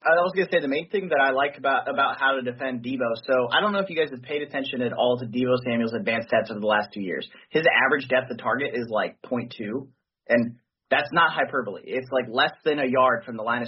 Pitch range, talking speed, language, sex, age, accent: 120-140 Hz, 270 wpm, English, male, 30-49, American